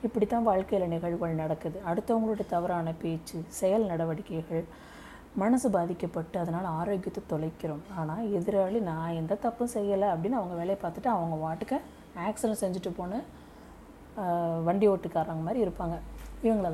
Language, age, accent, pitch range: Tamil, 30-49, native, 165-215 Hz